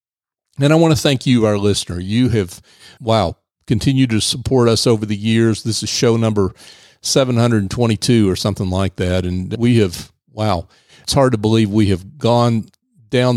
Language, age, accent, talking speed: English, 40-59, American, 175 wpm